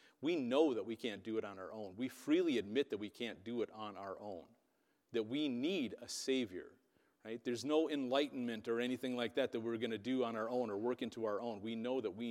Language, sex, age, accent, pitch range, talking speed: English, male, 40-59, American, 115-145 Hz, 245 wpm